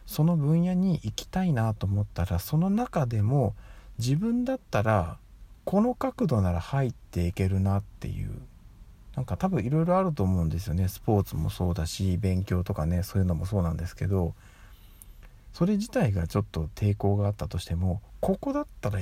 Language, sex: Japanese, male